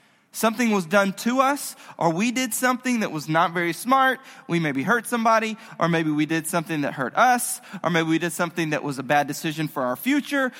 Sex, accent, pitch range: male, American, 170-225 Hz